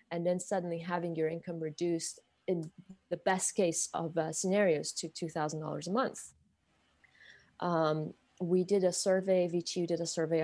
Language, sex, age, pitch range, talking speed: English, female, 30-49, 155-180 Hz, 155 wpm